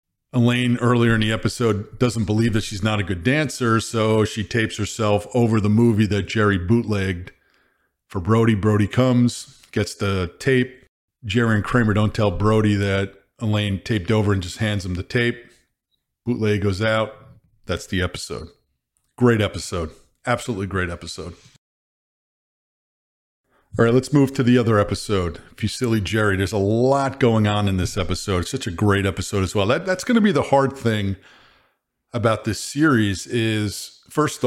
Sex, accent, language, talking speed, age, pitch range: male, American, English, 165 wpm, 40-59, 100-120 Hz